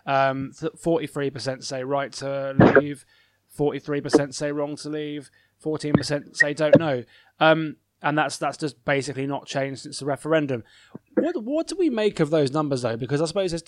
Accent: British